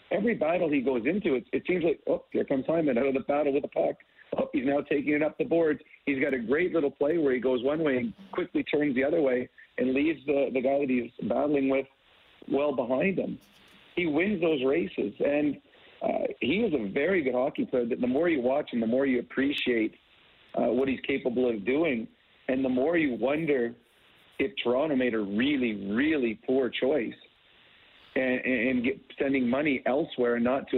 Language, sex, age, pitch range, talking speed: English, male, 50-69, 125-155 Hz, 210 wpm